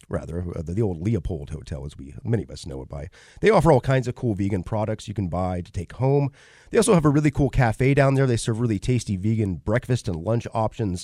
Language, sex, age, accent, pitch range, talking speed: English, male, 30-49, American, 95-130 Hz, 245 wpm